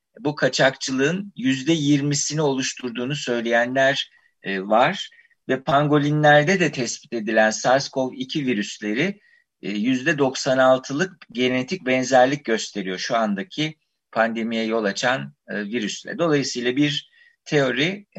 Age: 50-69